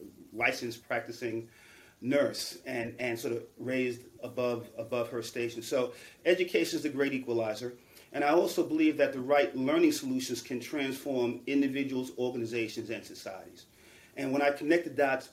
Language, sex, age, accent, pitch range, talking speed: English, male, 40-59, American, 120-150 Hz, 155 wpm